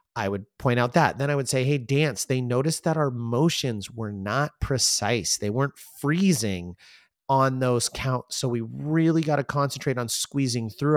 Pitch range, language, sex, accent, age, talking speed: 110-140 Hz, English, male, American, 30-49, 185 wpm